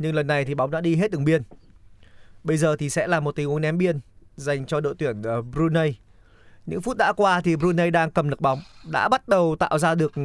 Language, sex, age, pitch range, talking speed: Vietnamese, male, 20-39, 125-170 Hz, 240 wpm